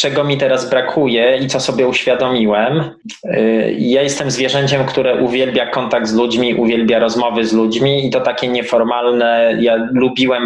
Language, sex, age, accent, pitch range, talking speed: Polish, male, 20-39, native, 115-130 Hz, 150 wpm